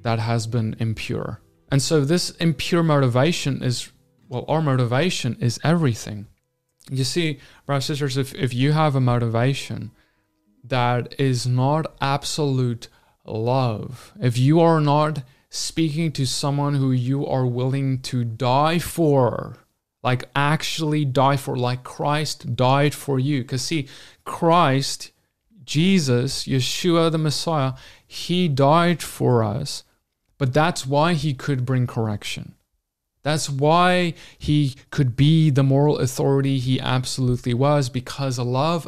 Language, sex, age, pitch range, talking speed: English, male, 30-49, 125-155 Hz, 130 wpm